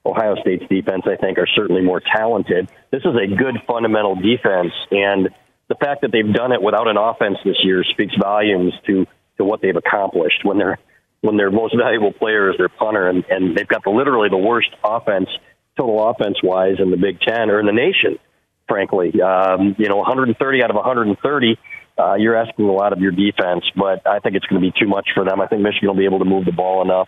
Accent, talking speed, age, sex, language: American, 225 wpm, 40-59, male, English